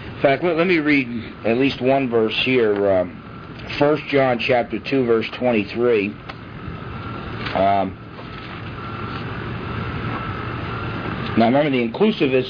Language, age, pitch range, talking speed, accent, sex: English, 50-69, 105-130 Hz, 110 wpm, American, male